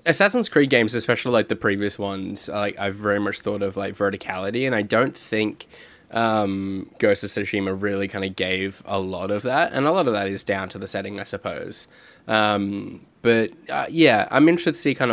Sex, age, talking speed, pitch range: male, 10-29, 210 wpm, 100-115 Hz